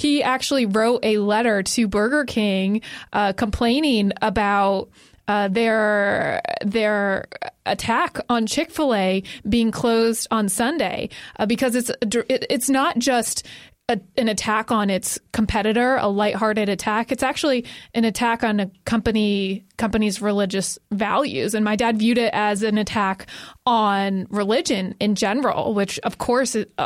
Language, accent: English, American